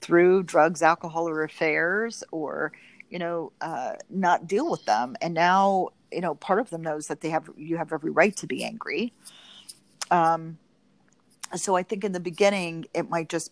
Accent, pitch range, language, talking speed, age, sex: American, 155-190 Hz, English, 180 wpm, 40-59, female